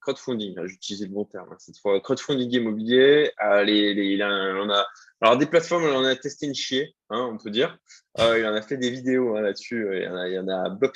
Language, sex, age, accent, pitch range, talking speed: French, male, 20-39, French, 105-140 Hz, 255 wpm